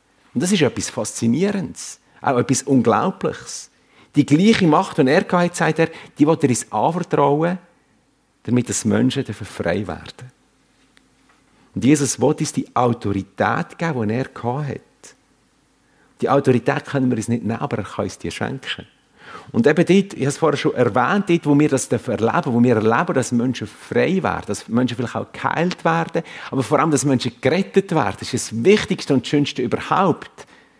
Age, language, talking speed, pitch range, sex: 50-69, German, 175 wpm, 120-170 Hz, male